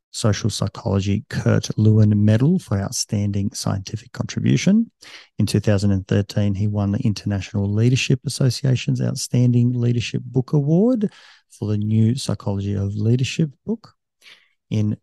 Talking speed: 115 wpm